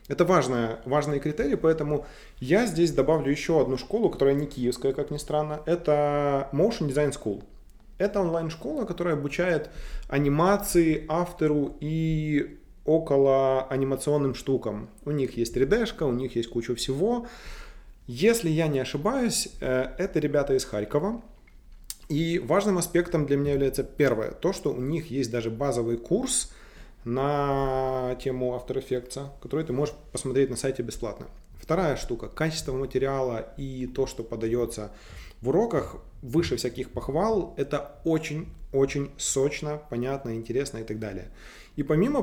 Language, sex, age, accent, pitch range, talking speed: Russian, male, 20-39, native, 125-160 Hz, 140 wpm